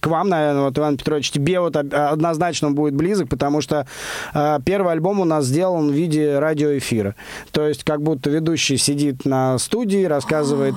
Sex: male